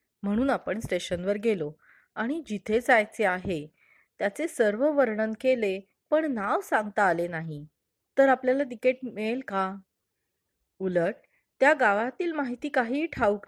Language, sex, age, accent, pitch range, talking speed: Marathi, female, 30-49, native, 190-270 Hz, 125 wpm